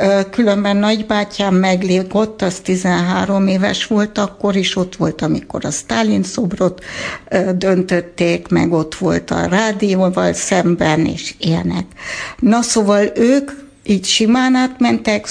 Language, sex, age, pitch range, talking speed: Hungarian, female, 60-79, 175-220 Hz, 120 wpm